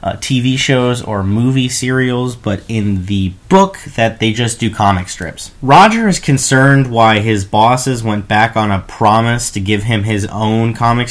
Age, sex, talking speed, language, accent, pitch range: 30-49, male, 180 wpm, English, American, 105-125 Hz